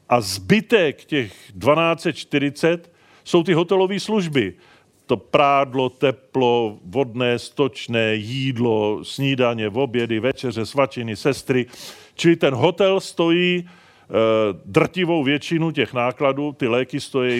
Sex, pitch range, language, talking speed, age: male, 120-155 Hz, Czech, 105 wpm, 40-59